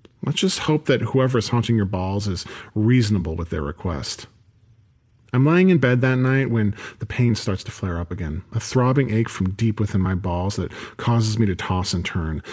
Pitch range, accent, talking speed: 95-120 Hz, American, 205 wpm